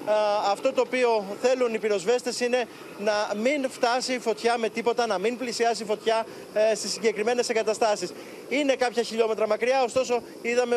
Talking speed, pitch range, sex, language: 155 wpm, 220-245 Hz, male, Greek